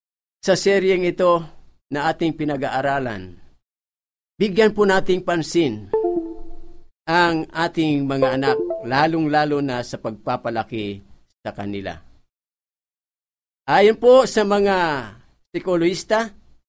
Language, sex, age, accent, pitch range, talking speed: Filipino, male, 50-69, native, 130-195 Hz, 90 wpm